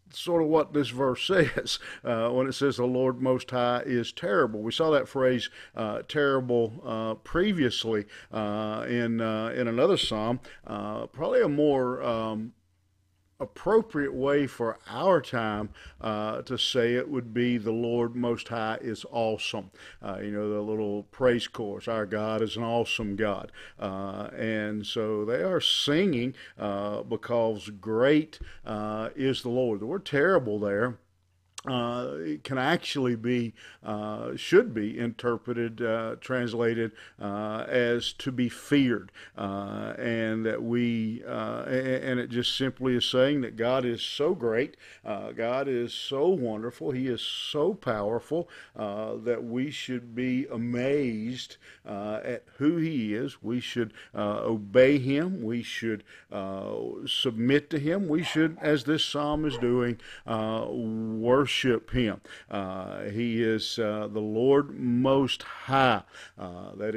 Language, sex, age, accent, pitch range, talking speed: English, male, 50-69, American, 110-130 Hz, 145 wpm